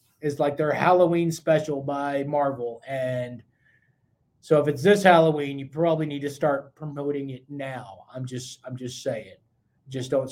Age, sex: 20-39, male